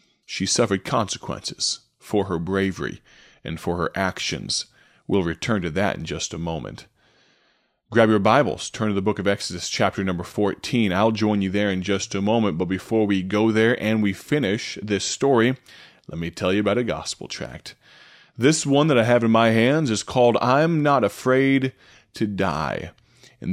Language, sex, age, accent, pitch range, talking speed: English, male, 30-49, American, 95-120 Hz, 185 wpm